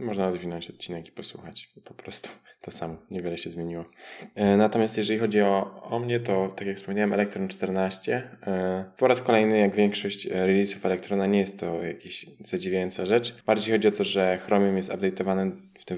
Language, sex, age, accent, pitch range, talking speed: Polish, male, 20-39, native, 95-115 Hz, 175 wpm